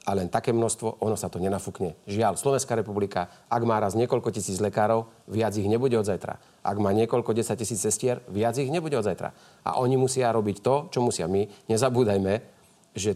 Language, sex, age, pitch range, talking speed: Slovak, male, 40-59, 100-115 Hz, 195 wpm